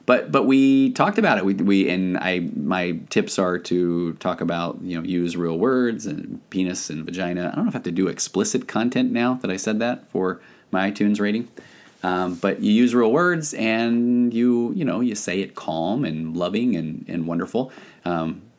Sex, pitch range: male, 85-110 Hz